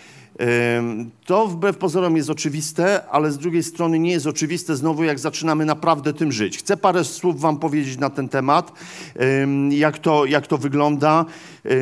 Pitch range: 145-175 Hz